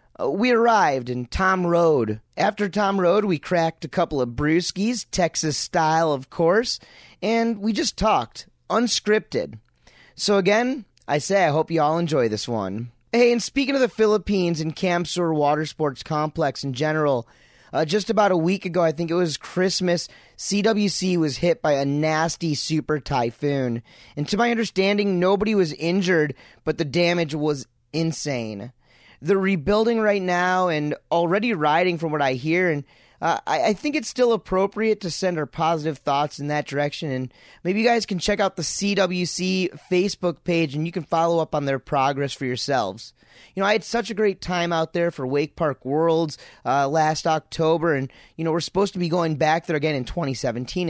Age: 30-49